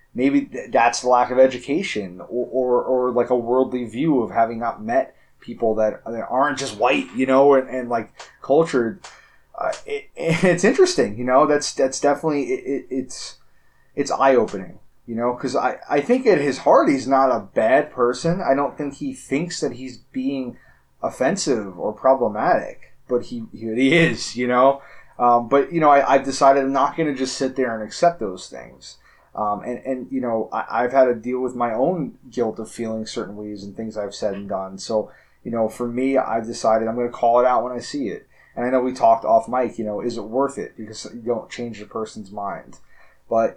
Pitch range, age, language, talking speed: 115-140 Hz, 20-39, English, 210 wpm